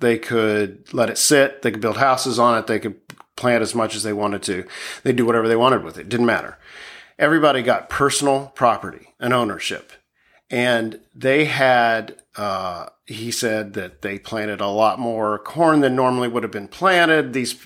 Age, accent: 50-69, American